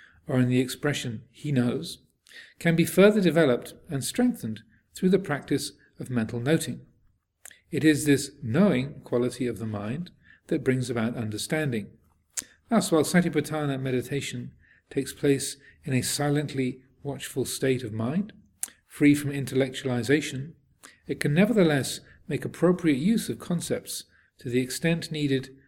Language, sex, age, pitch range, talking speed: English, male, 40-59, 120-165 Hz, 135 wpm